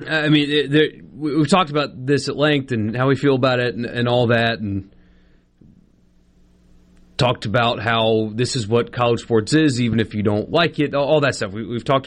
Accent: American